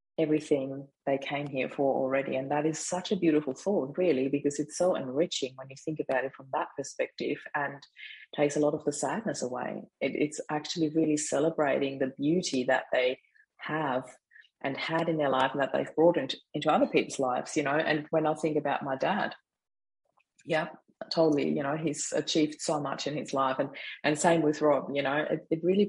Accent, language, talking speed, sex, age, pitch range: Australian, English, 200 wpm, female, 30-49, 135-160 Hz